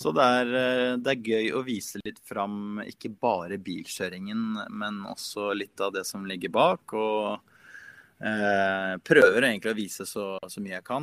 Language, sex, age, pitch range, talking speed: English, male, 20-39, 105-135 Hz, 180 wpm